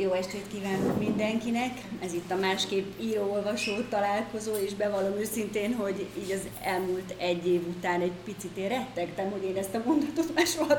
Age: 30-49